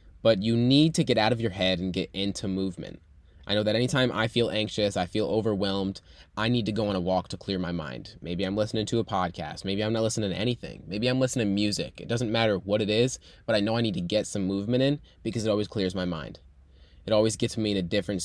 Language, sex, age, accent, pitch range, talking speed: English, male, 20-39, American, 85-120 Hz, 265 wpm